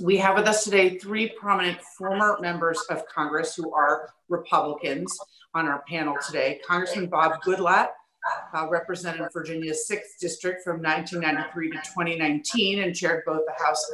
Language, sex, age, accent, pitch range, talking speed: English, female, 40-59, American, 155-190 Hz, 150 wpm